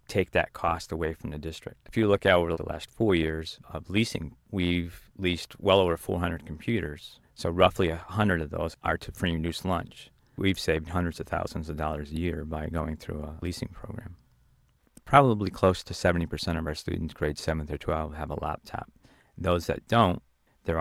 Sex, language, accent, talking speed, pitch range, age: male, English, American, 190 wpm, 80-90 Hz, 40-59